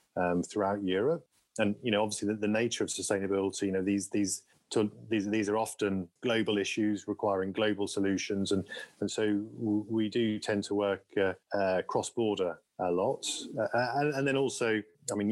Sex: male